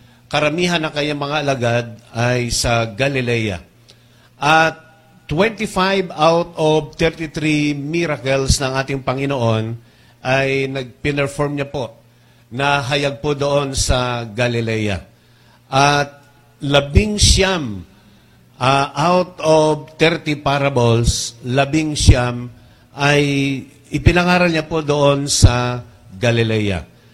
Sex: male